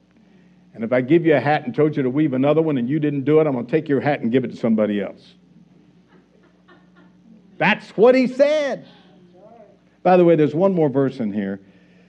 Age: 60-79